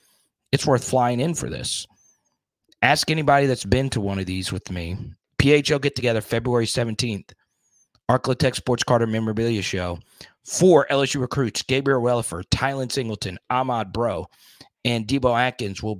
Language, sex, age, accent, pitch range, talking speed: English, male, 30-49, American, 105-135 Hz, 145 wpm